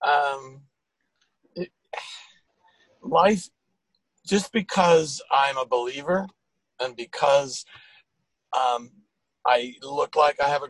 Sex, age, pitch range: male, 40-59, 125-165 Hz